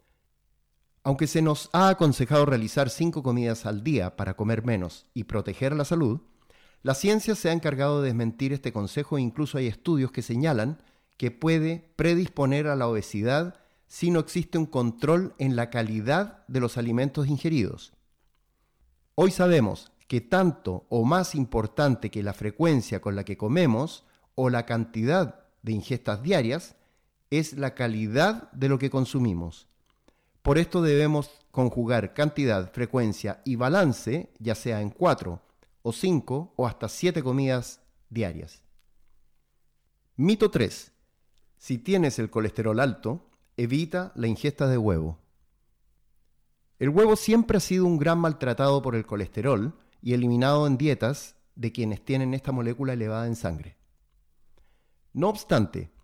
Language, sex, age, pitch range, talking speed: Spanish, male, 50-69, 110-150 Hz, 140 wpm